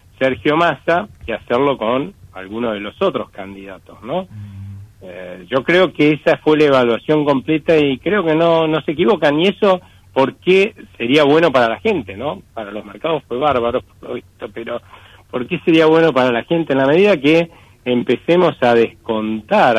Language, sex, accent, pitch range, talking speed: Italian, male, Argentinian, 105-135 Hz, 170 wpm